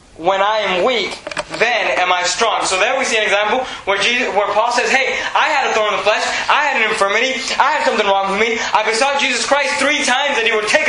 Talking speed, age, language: 260 wpm, 20-39, English